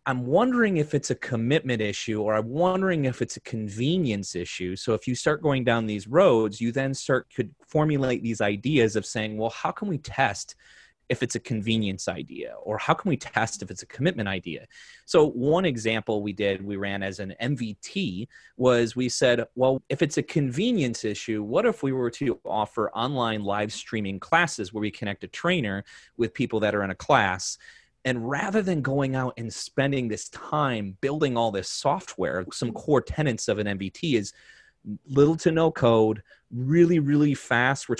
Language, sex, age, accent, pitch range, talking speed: English, male, 30-49, American, 110-135 Hz, 190 wpm